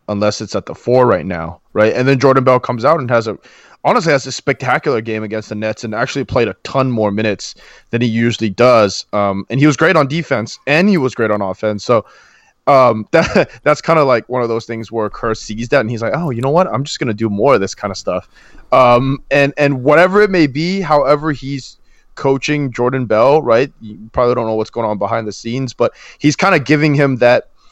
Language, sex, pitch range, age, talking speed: English, male, 110-150 Hz, 20-39, 245 wpm